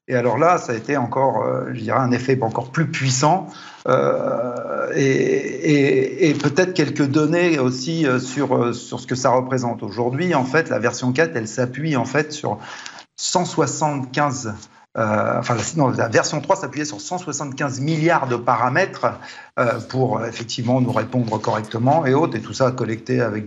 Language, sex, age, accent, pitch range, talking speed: French, male, 50-69, French, 120-150 Hz, 165 wpm